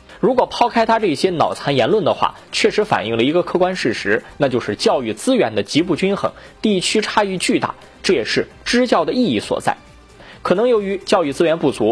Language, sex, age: Chinese, male, 20-39